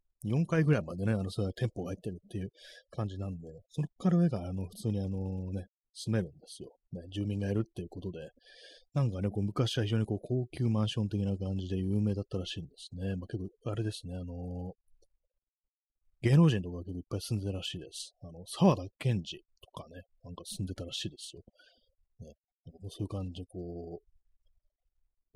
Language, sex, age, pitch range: Japanese, male, 30-49, 90-120 Hz